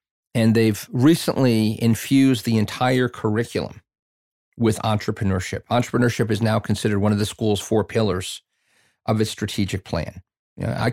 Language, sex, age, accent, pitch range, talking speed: English, male, 50-69, American, 100-115 Hz, 130 wpm